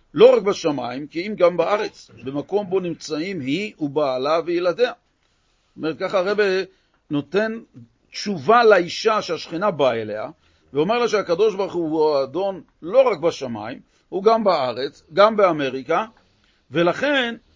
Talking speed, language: 130 wpm, Hebrew